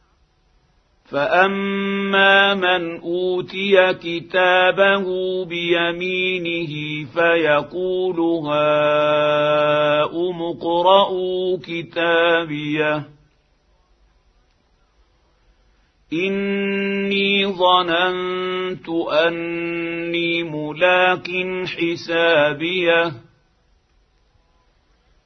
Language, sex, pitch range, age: Arabic, male, 150-185 Hz, 50-69